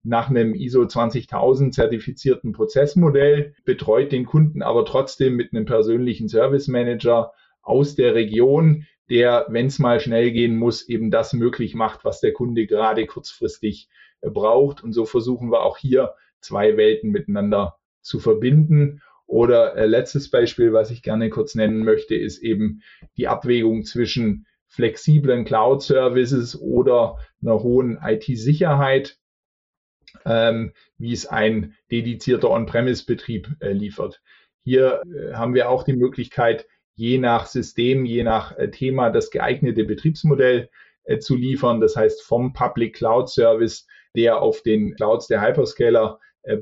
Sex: male